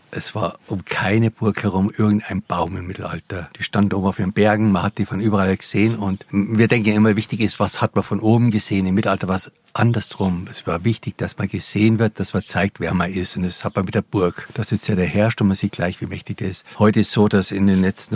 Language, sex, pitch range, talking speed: German, male, 95-105 Hz, 260 wpm